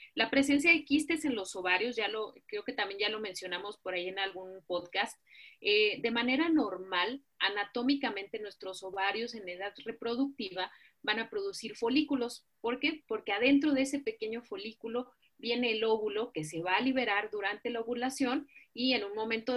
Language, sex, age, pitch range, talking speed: Spanish, female, 30-49, 200-260 Hz, 175 wpm